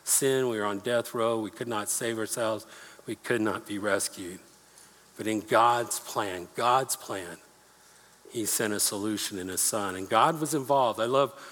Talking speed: 180 wpm